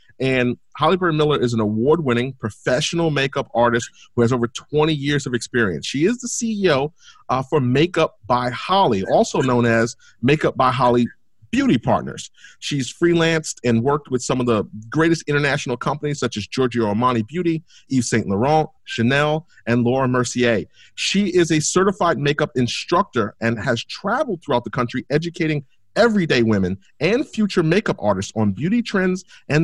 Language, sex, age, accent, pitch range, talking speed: English, male, 40-59, American, 120-170 Hz, 160 wpm